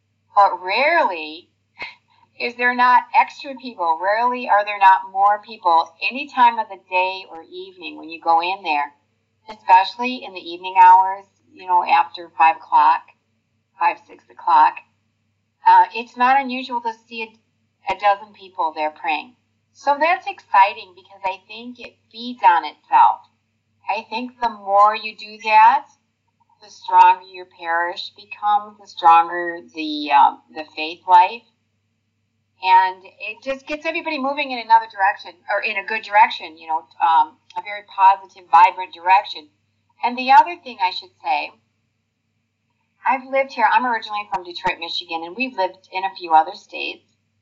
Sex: female